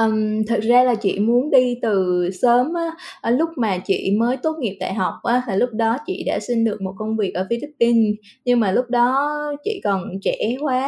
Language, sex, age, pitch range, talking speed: Vietnamese, female, 20-39, 205-255 Hz, 225 wpm